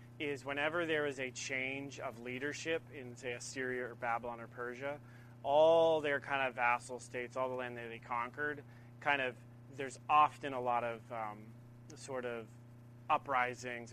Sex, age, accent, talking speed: male, 30-49, American, 165 wpm